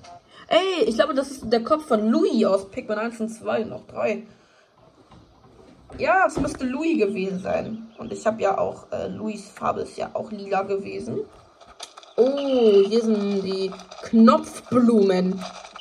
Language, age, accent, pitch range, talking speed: German, 20-39, German, 200-275 Hz, 150 wpm